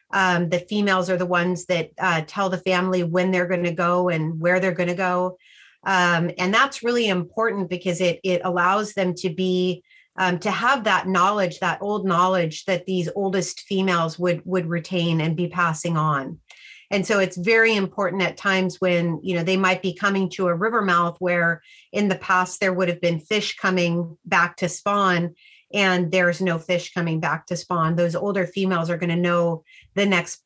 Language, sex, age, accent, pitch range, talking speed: English, female, 30-49, American, 175-190 Hz, 195 wpm